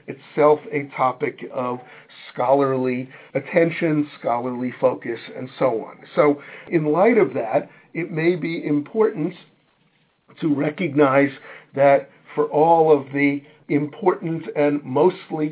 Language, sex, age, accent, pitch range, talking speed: English, male, 50-69, American, 130-160 Hz, 115 wpm